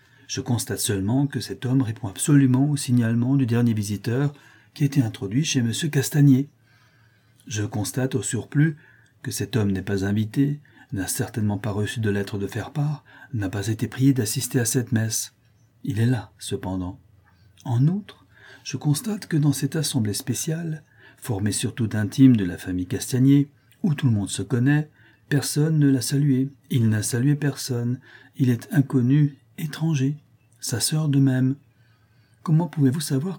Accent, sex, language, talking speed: French, male, French, 165 wpm